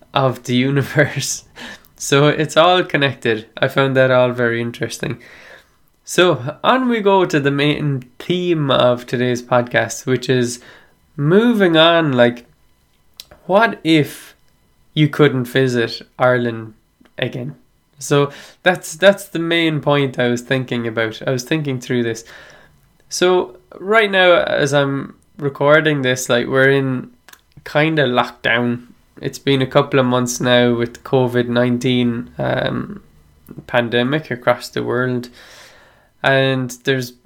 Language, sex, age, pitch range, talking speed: English, male, 20-39, 120-155 Hz, 130 wpm